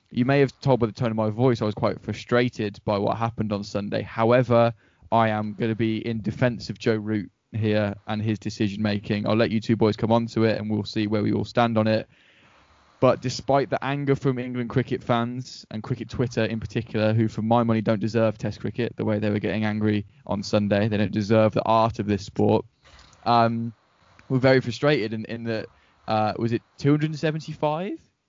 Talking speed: 215 wpm